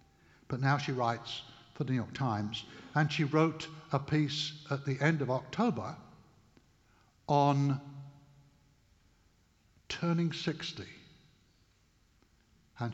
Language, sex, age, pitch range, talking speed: English, male, 60-79, 130-165 Hz, 105 wpm